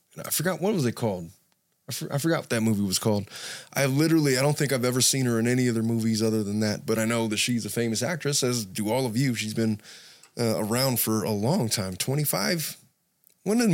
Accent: American